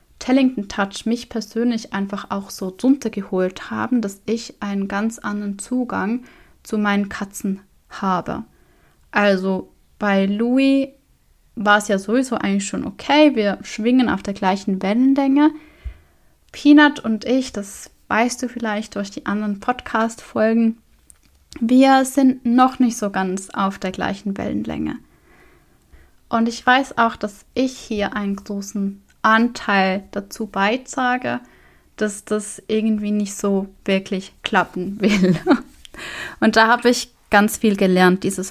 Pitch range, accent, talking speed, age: 200-245 Hz, German, 130 wpm, 20-39